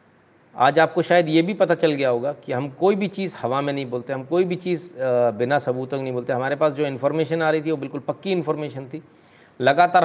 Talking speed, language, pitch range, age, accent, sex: 235 wpm, Hindi, 120-170 Hz, 40-59, native, male